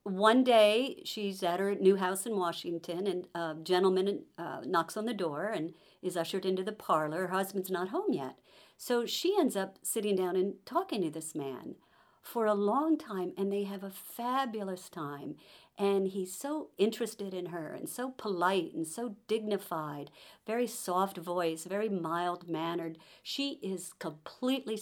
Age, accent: 50-69, American